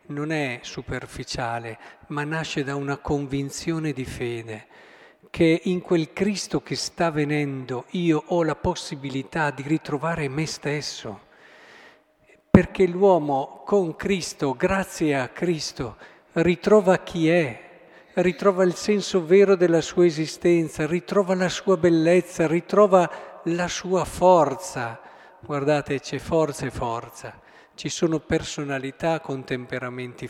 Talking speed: 120 wpm